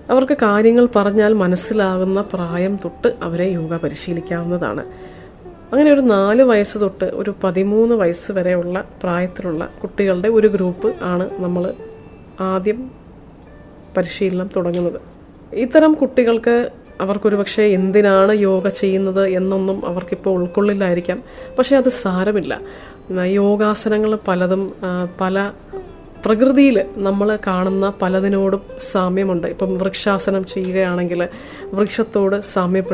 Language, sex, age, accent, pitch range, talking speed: English, female, 30-49, Indian, 185-215 Hz, 120 wpm